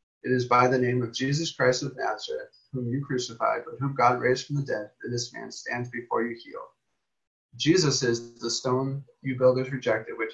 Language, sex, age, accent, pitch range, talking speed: English, male, 30-49, American, 125-155 Hz, 205 wpm